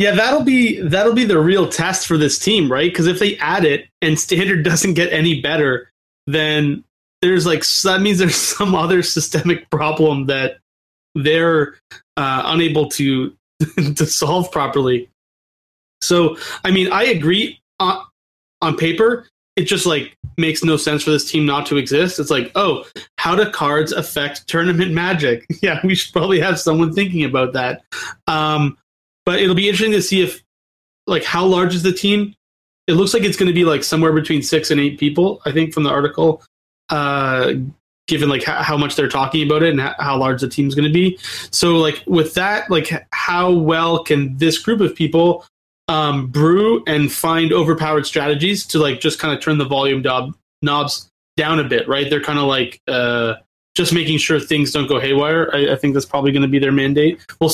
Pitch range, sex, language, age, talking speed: 145-175 Hz, male, English, 30-49, 190 wpm